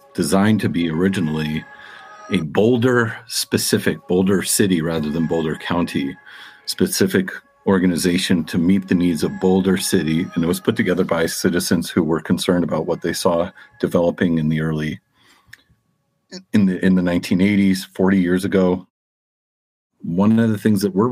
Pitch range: 90-105 Hz